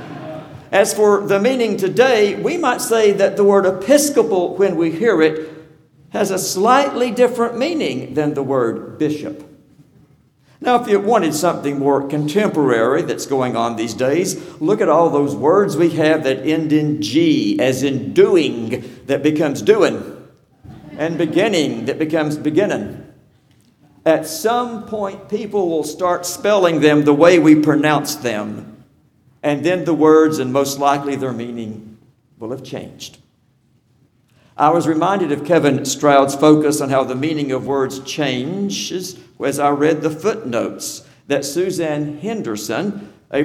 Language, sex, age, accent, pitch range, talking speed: English, male, 60-79, American, 140-185 Hz, 150 wpm